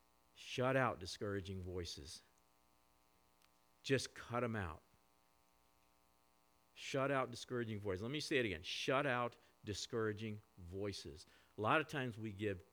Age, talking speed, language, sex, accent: 50-69, 125 wpm, English, male, American